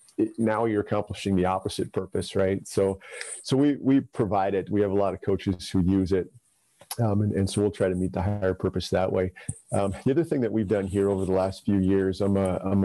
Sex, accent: male, American